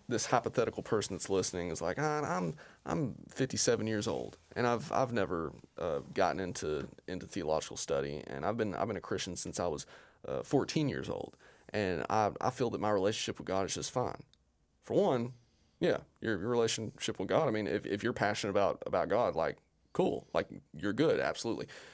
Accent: American